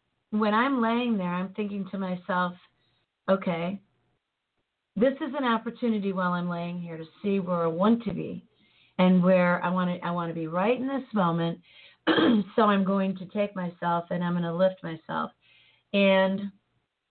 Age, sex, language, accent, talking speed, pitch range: 40-59, female, English, American, 175 wpm, 170-195 Hz